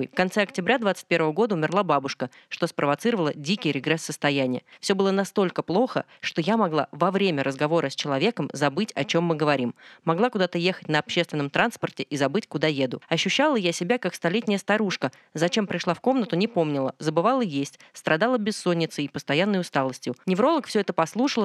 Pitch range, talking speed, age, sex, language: 155-205 Hz, 175 wpm, 20-39, female, Russian